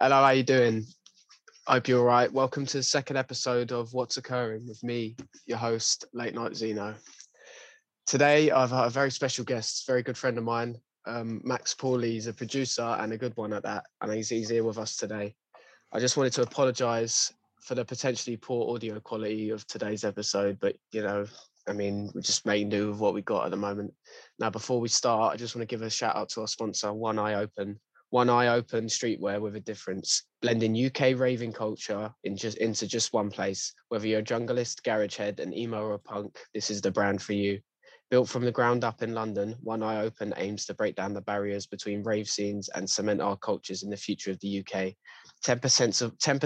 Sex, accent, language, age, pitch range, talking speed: male, British, English, 20-39, 105-125 Hz, 215 wpm